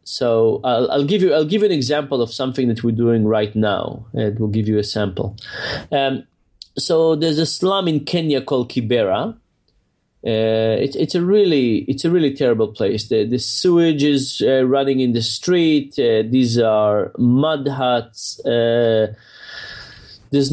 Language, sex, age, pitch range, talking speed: English, male, 30-49, 120-165 Hz, 170 wpm